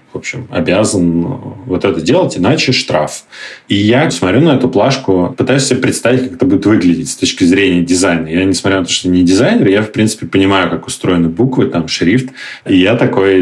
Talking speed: 195 wpm